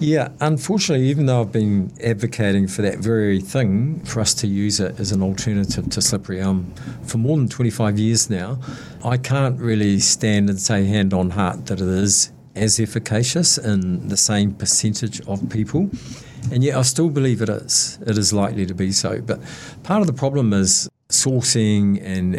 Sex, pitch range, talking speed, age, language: male, 95-125 Hz, 185 wpm, 50-69, English